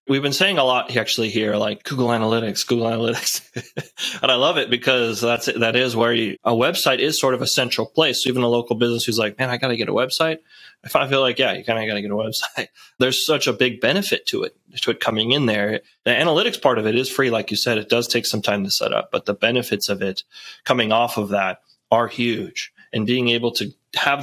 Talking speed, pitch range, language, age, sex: 255 wpm, 110-130 Hz, English, 20-39, male